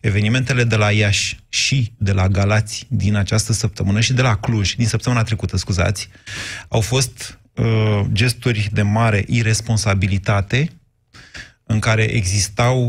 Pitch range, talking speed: 105-130 Hz, 135 wpm